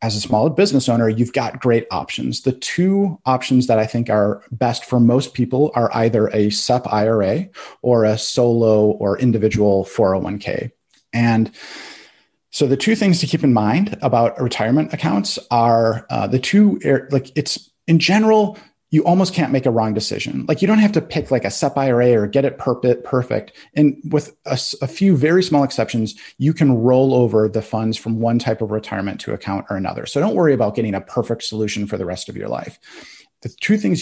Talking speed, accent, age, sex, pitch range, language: 200 wpm, American, 30-49, male, 110-135 Hz, English